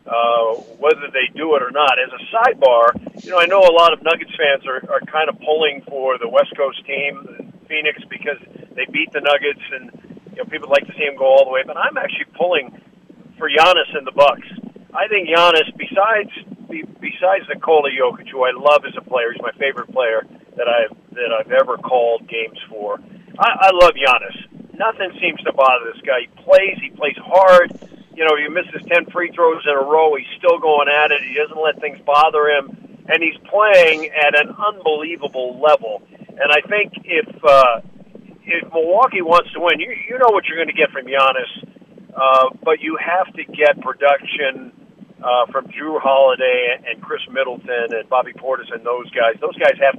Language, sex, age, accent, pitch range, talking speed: English, male, 50-69, American, 140-215 Hz, 200 wpm